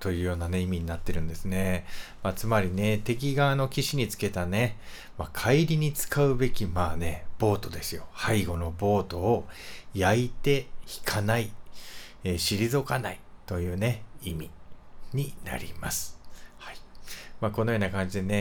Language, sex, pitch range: Japanese, male, 90-120 Hz